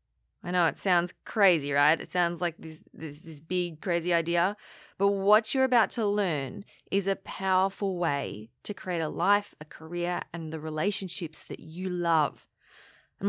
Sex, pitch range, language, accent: female, 170-215 Hz, English, Australian